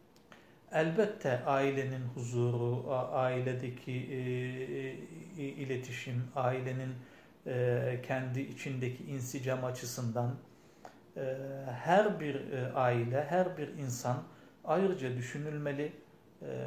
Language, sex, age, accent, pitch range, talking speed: Turkish, male, 50-69, native, 125-155 Hz, 65 wpm